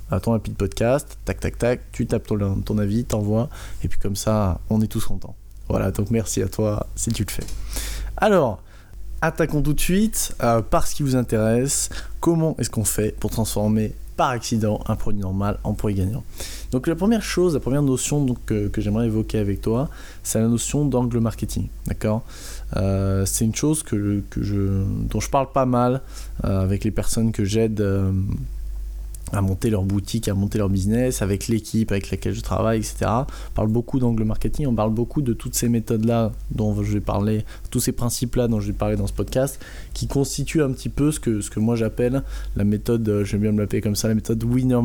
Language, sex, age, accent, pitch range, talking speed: French, male, 20-39, French, 100-120 Hz, 210 wpm